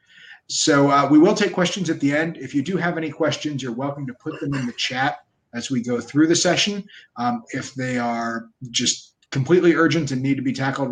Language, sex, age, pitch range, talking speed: English, male, 30-49, 130-175 Hz, 225 wpm